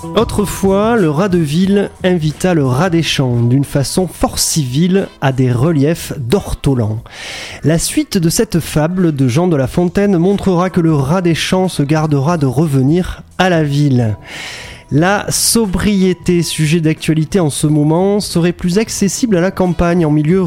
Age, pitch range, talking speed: 30-49, 145-195 Hz, 165 wpm